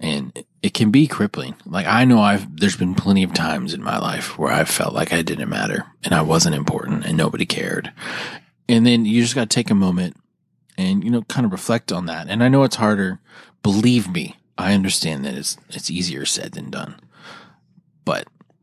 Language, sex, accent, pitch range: English, male, American, 90-120 Hz